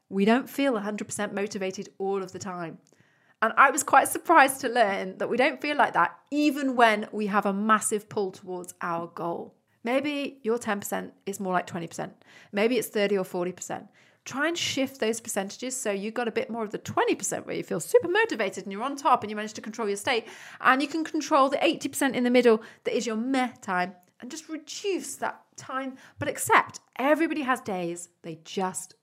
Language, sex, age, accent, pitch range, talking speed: English, female, 30-49, British, 200-280 Hz, 205 wpm